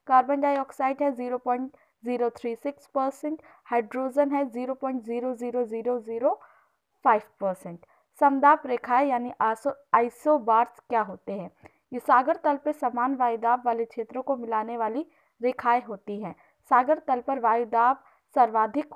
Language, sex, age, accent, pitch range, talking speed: Hindi, female, 20-39, native, 235-290 Hz, 145 wpm